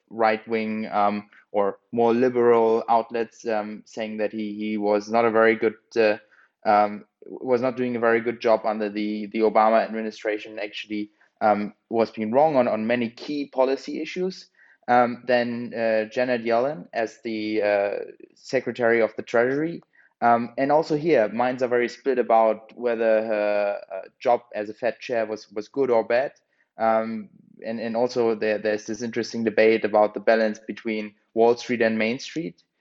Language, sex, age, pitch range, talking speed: English, male, 20-39, 110-125 Hz, 170 wpm